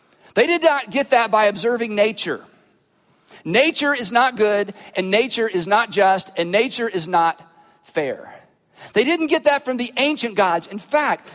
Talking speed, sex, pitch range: 170 wpm, male, 190-255 Hz